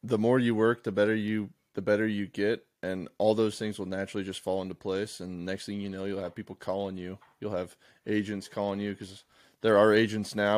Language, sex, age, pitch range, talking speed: English, male, 20-39, 100-125 Hz, 240 wpm